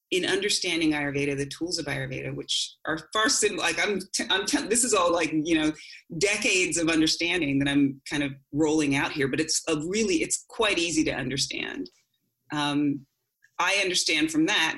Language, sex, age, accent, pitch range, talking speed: English, female, 30-49, American, 140-180 Hz, 175 wpm